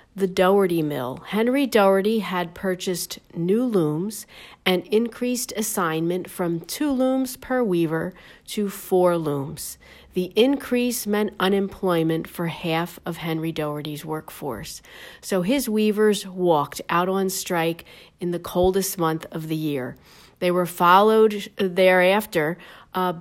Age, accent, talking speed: 40-59, American, 125 wpm